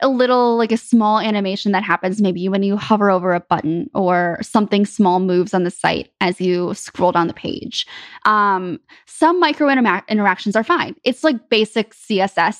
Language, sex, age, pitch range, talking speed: English, female, 20-39, 185-240 Hz, 180 wpm